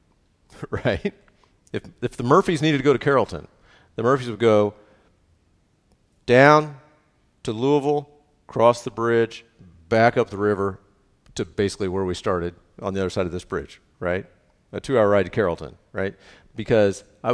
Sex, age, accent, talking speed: male, 50-69, American, 155 wpm